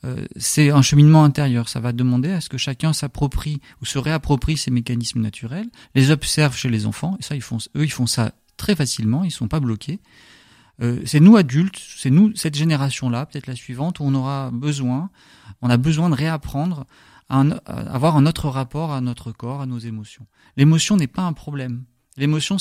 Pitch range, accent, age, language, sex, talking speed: 125-155 Hz, French, 30-49, French, male, 205 wpm